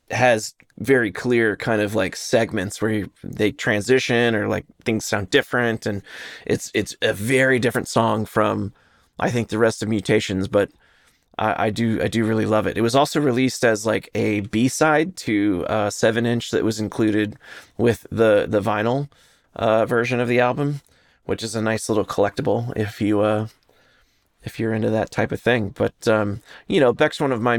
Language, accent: English, American